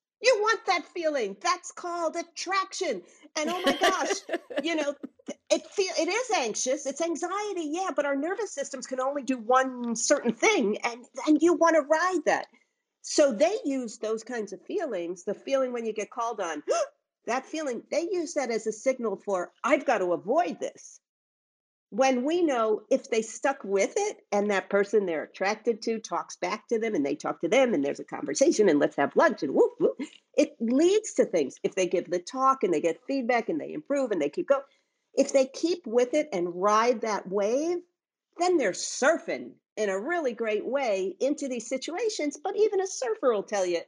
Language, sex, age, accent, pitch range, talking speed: English, female, 50-69, American, 205-310 Hz, 200 wpm